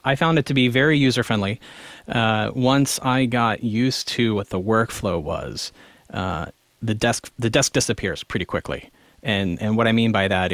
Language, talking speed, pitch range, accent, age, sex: English, 190 wpm, 105-130 Hz, American, 30-49, male